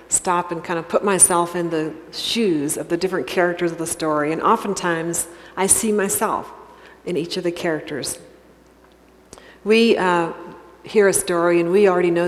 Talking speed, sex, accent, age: 170 wpm, female, American, 40-59